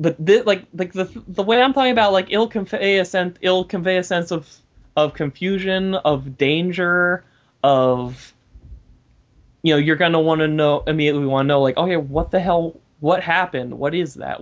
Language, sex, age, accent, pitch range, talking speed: English, male, 20-39, American, 135-160 Hz, 190 wpm